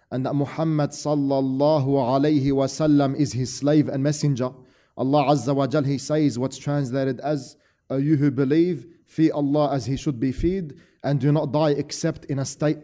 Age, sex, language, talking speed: 30-49, male, English, 180 wpm